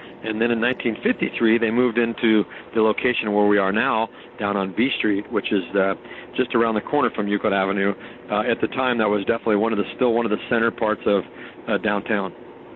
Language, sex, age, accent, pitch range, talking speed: English, male, 50-69, American, 105-120 Hz, 215 wpm